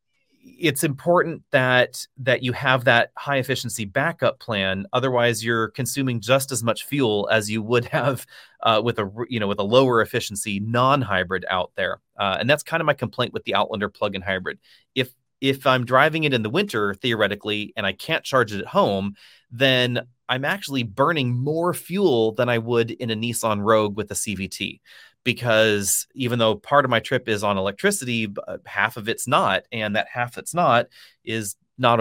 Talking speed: 190 wpm